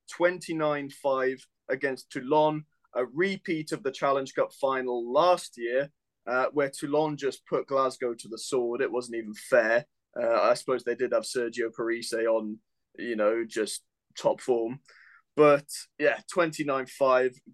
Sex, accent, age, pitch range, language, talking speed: male, British, 20-39, 120-145 Hz, English, 140 wpm